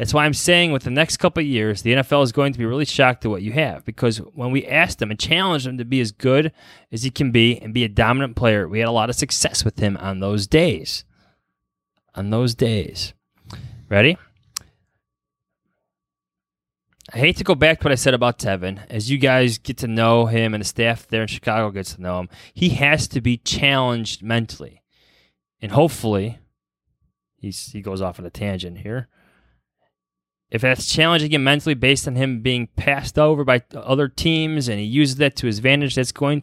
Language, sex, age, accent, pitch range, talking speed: English, male, 20-39, American, 100-135 Hz, 205 wpm